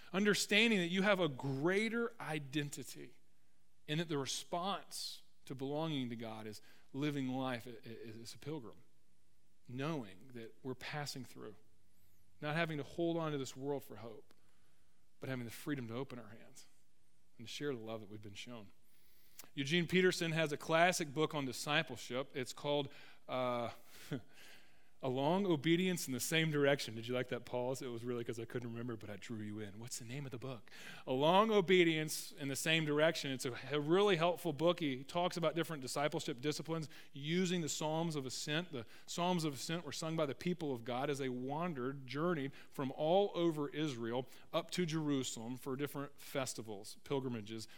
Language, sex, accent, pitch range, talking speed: English, male, American, 125-155 Hz, 180 wpm